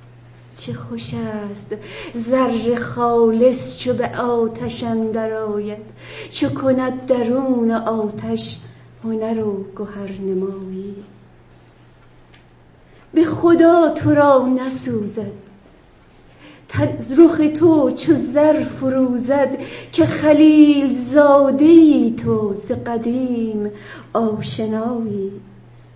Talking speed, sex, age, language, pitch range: 75 wpm, female, 40-59, Persian, 205-270 Hz